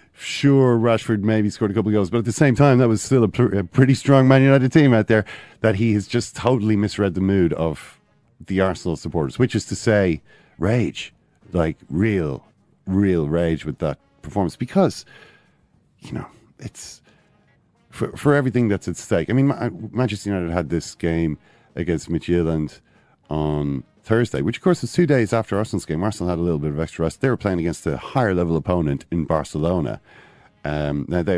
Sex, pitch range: male, 80-110 Hz